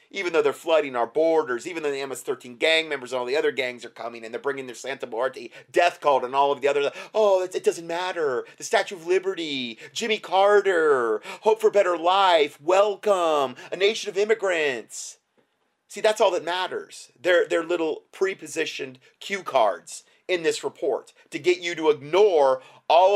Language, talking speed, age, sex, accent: English, 190 wpm, 30-49, male, American